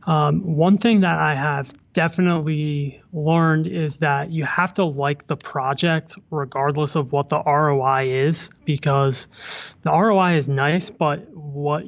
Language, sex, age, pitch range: English, male, 20-39, 140-165 Hz